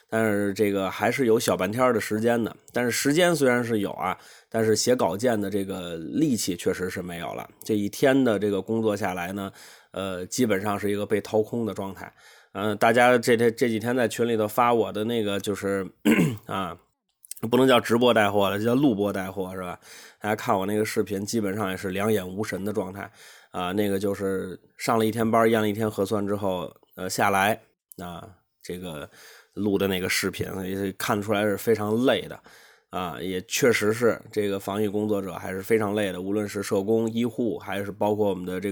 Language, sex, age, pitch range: Chinese, male, 20-39, 95-110 Hz